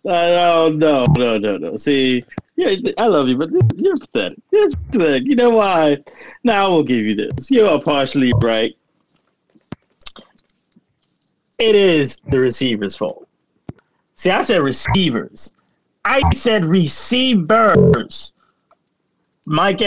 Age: 40-59